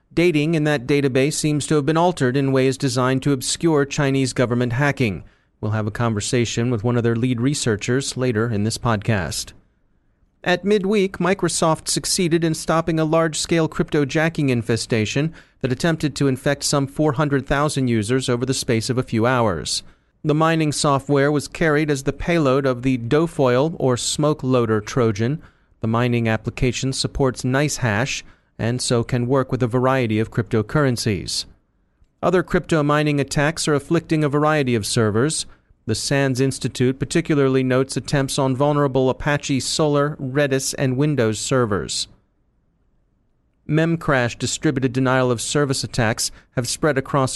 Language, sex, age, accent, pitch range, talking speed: English, male, 30-49, American, 125-150 Hz, 145 wpm